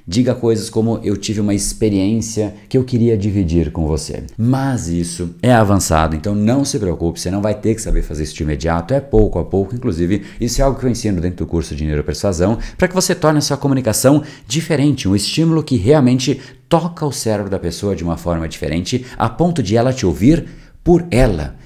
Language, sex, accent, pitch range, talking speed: Portuguese, male, Brazilian, 85-120 Hz, 210 wpm